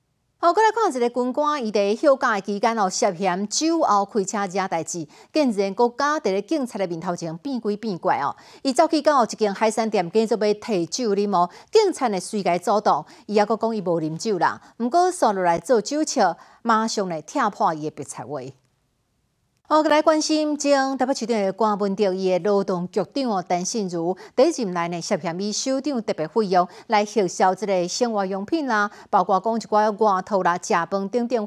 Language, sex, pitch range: Chinese, female, 190-245 Hz